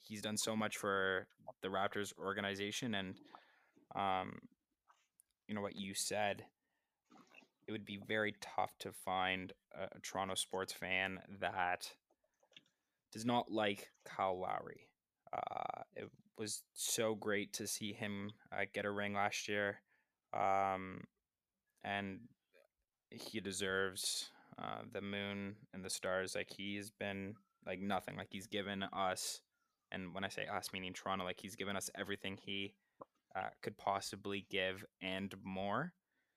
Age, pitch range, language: 20-39, 95-105 Hz, English